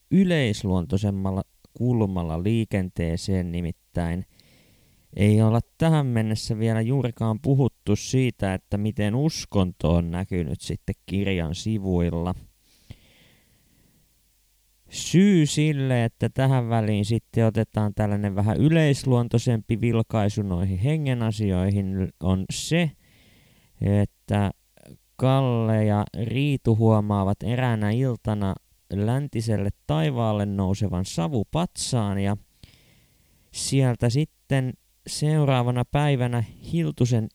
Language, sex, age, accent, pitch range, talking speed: Finnish, male, 20-39, native, 95-120 Hz, 85 wpm